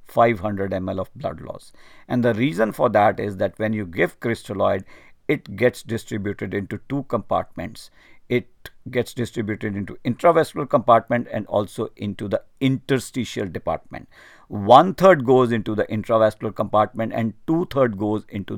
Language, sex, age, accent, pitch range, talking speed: English, male, 50-69, Indian, 105-130 Hz, 140 wpm